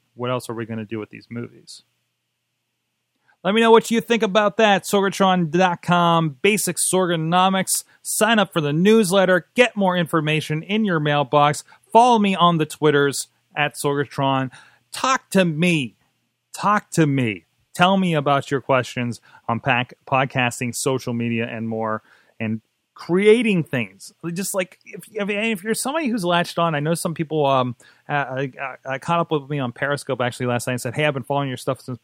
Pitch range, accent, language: 130-190 Hz, American, English